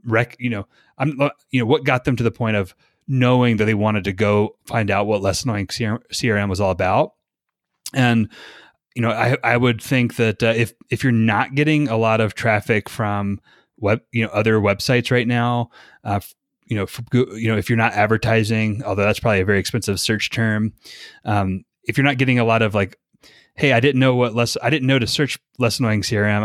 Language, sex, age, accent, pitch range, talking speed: English, male, 30-49, American, 105-120 Hz, 210 wpm